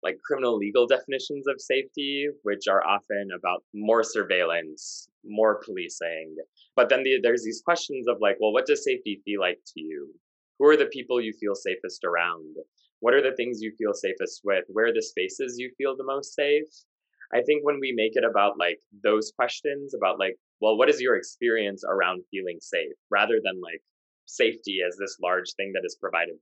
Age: 20-39